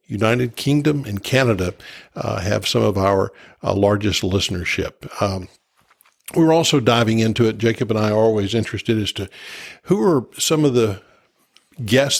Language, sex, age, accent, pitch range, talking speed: English, male, 50-69, American, 100-125 Hz, 155 wpm